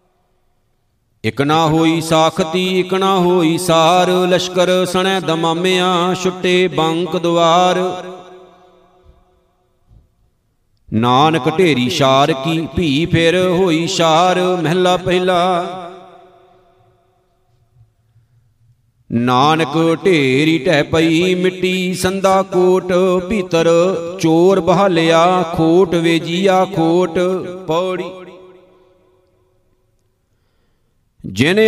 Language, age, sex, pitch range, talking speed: Punjabi, 50-69, male, 160-185 Hz, 75 wpm